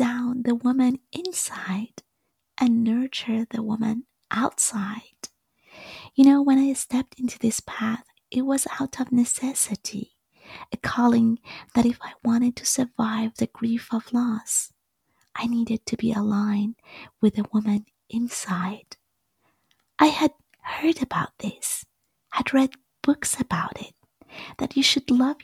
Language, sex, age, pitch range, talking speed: English, female, 30-49, 225-270 Hz, 130 wpm